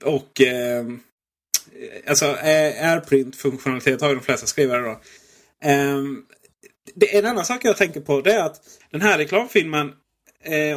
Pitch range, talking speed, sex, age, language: 125-155 Hz, 140 wpm, male, 30-49, Swedish